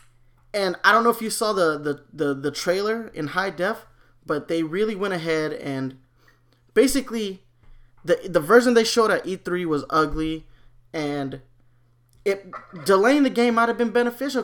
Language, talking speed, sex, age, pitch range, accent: English, 165 wpm, male, 20-39, 135-205 Hz, American